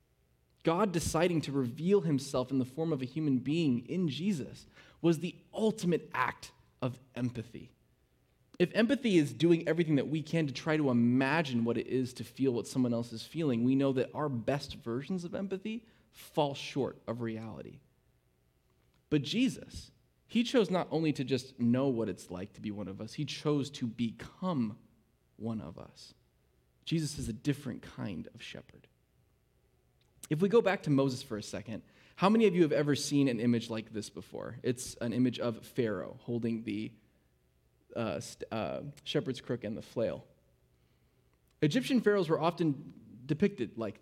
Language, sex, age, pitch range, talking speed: English, male, 20-39, 120-160 Hz, 170 wpm